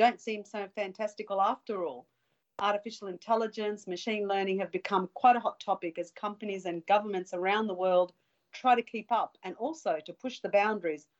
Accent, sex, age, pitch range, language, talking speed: Australian, female, 40-59, 175-210 Hz, English, 175 wpm